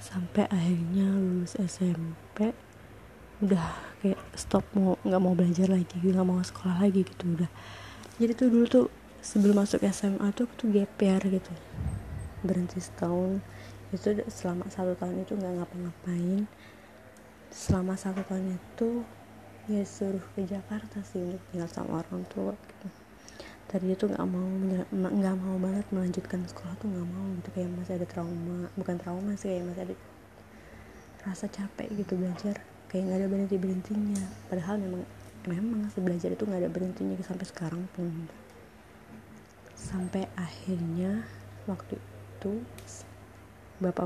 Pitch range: 170-195 Hz